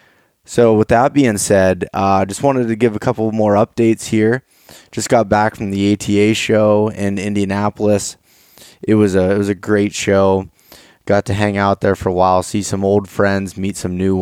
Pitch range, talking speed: 95-110 Hz, 205 wpm